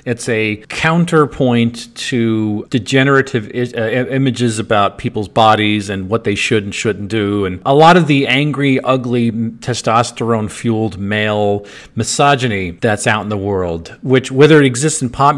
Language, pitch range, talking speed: English, 105-135 Hz, 160 wpm